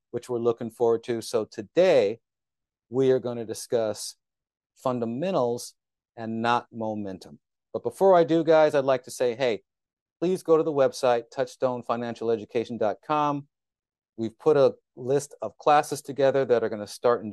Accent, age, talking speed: American, 40-59, 155 wpm